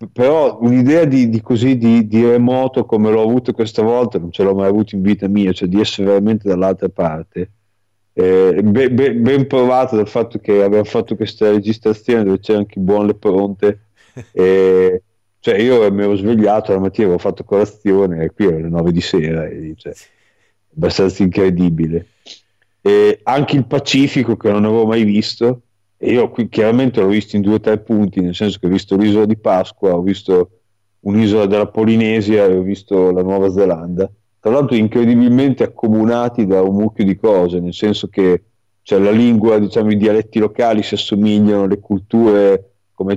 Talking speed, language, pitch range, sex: 180 wpm, Italian, 95-110 Hz, male